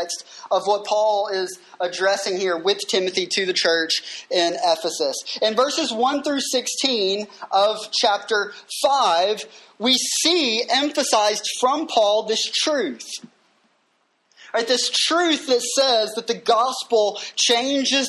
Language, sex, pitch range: English, male, 210-265 Hz